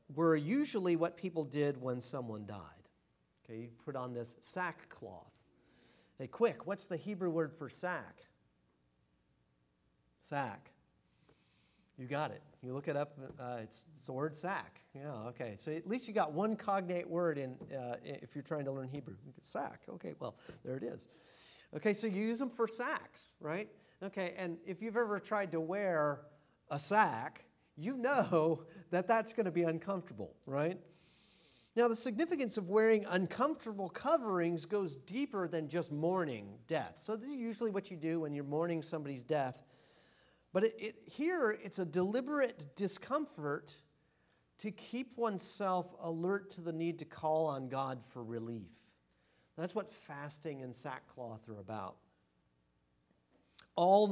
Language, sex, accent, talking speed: English, male, American, 155 wpm